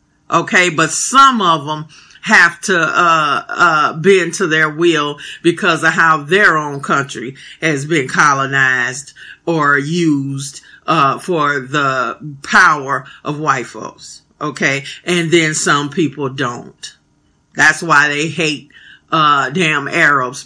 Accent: American